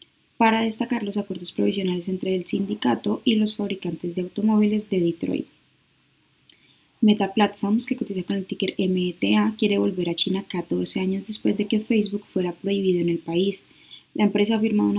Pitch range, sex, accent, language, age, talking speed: 185-220 Hz, female, Colombian, Spanish, 10-29, 170 wpm